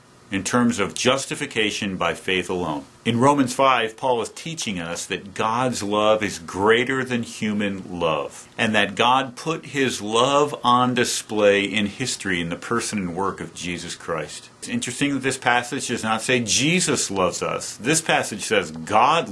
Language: English